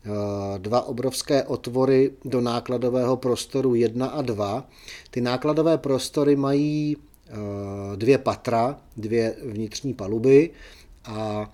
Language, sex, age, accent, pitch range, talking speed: Czech, male, 40-59, native, 115-130 Hz, 100 wpm